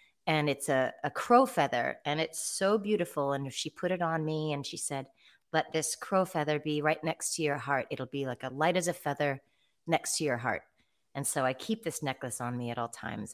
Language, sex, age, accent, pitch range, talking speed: English, female, 30-49, American, 135-165 Hz, 240 wpm